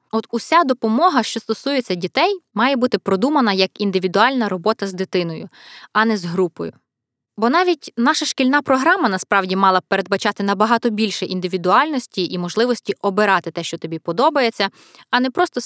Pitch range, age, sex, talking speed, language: 190-260 Hz, 20-39, female, 155 wpm, Ukrainian